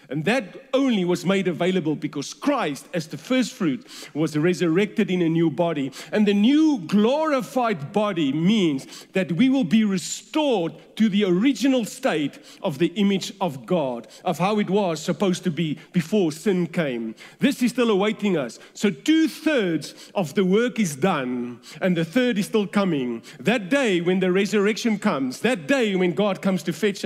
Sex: male